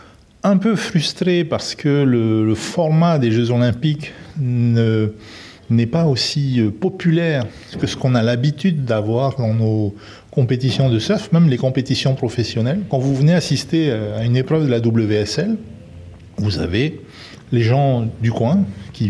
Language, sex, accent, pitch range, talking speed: French, male, French, 110-140 Hz, 150 wpm